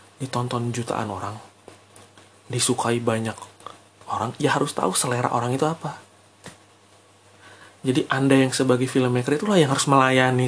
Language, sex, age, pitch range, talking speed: Indonesian, male, 30-49, 100-130 Hz, 125 wpm